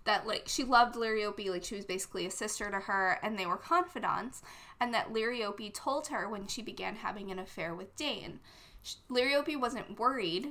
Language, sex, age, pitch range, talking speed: English, female, 20-39, 195-255 Hz, 190 wpm